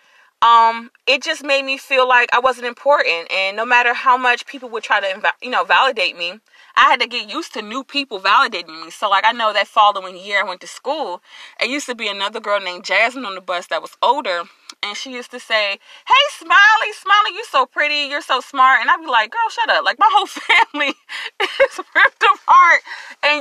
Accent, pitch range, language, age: American, 220-310 Hz, English, 30-49